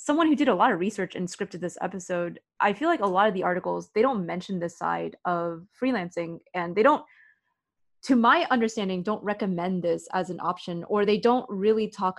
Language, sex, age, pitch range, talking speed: English, female, 20-39, 175-215 Hz, 210 wpm